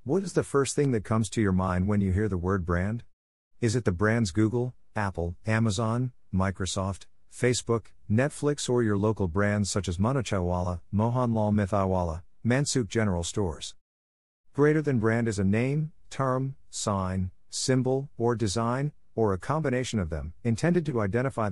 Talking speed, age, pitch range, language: 160 wpm, 50-69, 85-115 Hz, English